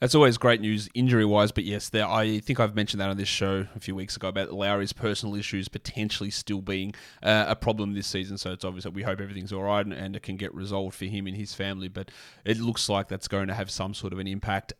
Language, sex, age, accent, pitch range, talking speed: English, male, 20-39, Australian, 100-125 Hz, 265 wpm